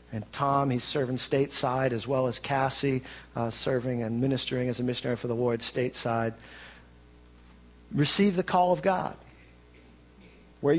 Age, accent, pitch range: 40-59, American, 115-140 Hz